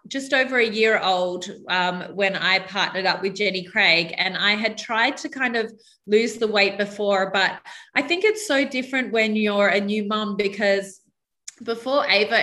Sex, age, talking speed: female, 20-39, 185 wpm